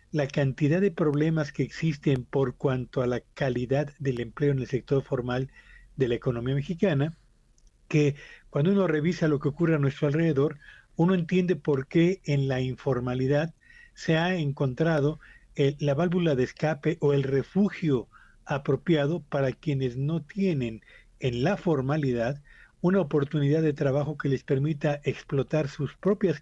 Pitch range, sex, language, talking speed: 135-160 Hz, male, Spanish, 150 wpm